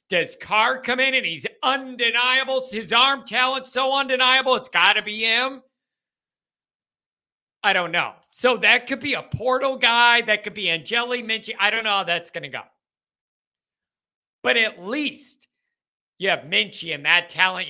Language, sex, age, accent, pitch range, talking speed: English, male, 50-69, American, 185-260 Hz, 165 wpm